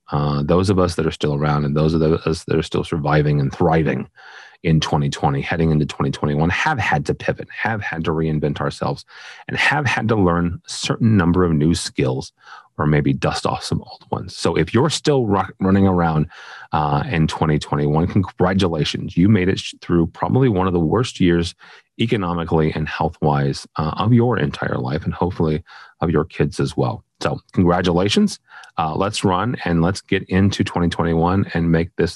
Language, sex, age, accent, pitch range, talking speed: English, male, 30-49, American, 80-95 Hz, 185 wpm